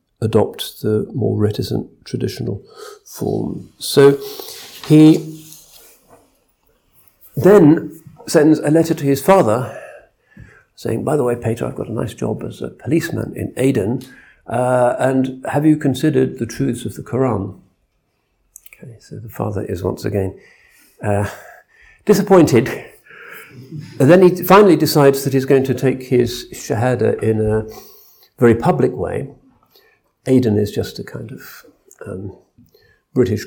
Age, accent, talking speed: 50-69, British, 130 wpm